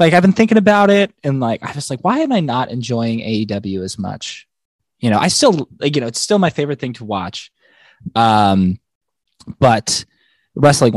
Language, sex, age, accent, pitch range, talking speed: English, male, 20-39, American, 105-165 Hz, 190 wpm